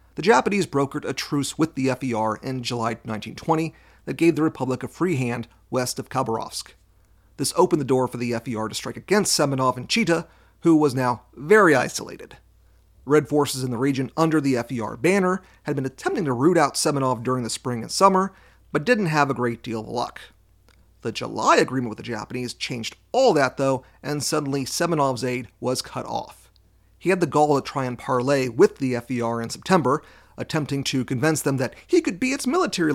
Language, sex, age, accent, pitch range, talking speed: English, male, 40-59, American, 115-155 Hz, 195 wpm